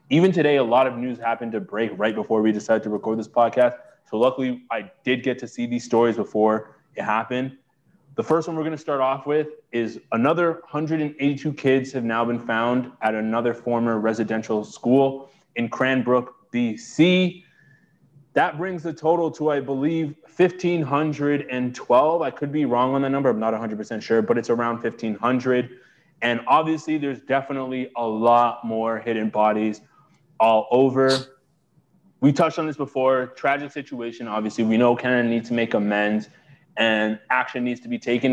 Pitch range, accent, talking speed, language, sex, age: 115-155 Hz, American, 170 wpm, English, male, 20-39